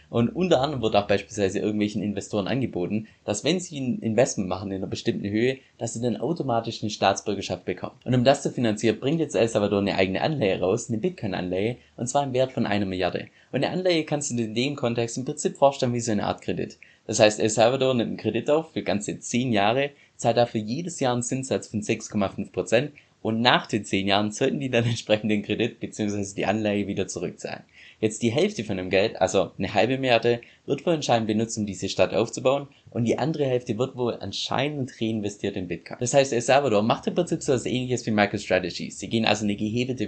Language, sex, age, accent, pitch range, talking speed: German, male, 20-39, German, 105-130 Hz, 220 wpm